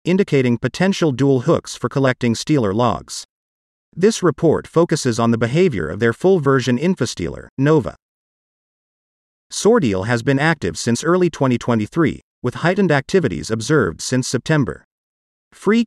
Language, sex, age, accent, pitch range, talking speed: English, male, 40-59, American, 115-160 Hz, 125 wpm